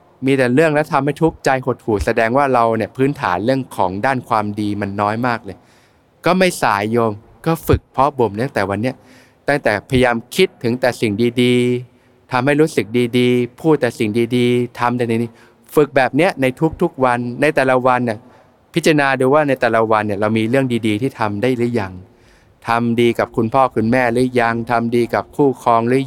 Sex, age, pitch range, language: male, 20-39, 115-135 Hz, Thai